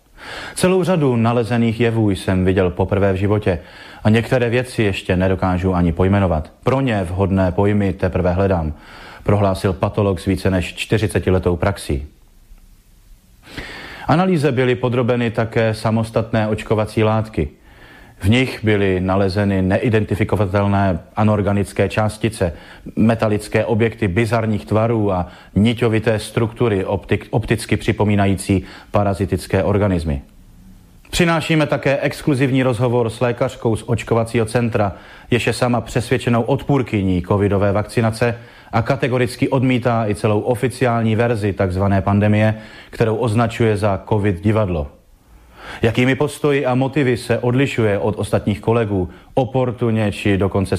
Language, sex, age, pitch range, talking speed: Slovak, male, 30-49, 100-120 Hz, 115 wpm